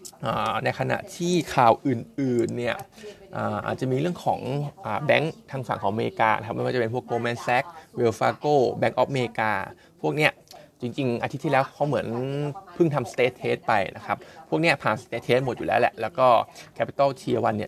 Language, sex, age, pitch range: Thai, male, 20-39, 115-145 Hz